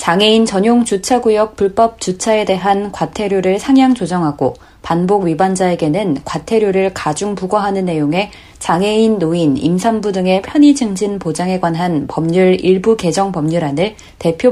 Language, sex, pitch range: Korean, female, 170-220 Hz